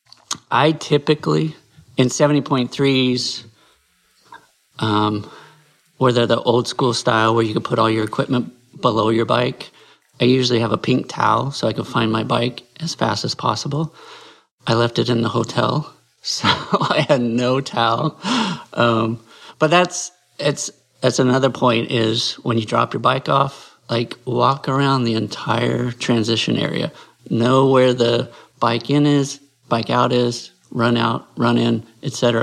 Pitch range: 115-135 Hz